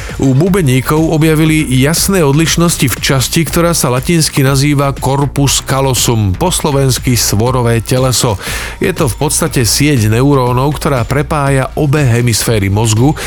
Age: 40-59